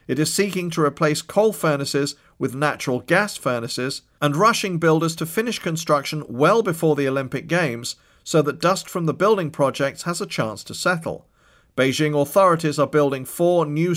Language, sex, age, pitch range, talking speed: English, male, 40-59, 135-165 Hz, 170 wpm